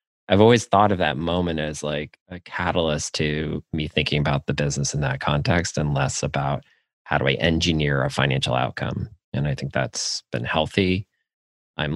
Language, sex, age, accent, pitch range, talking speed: English, male, 30-49, American, 75-95 Hz, 180 wpm